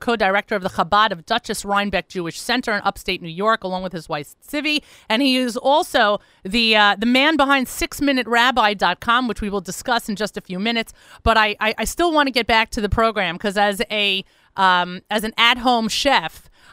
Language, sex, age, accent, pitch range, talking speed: English, female, 30-49, American, 195-240 Hz, 200 wpm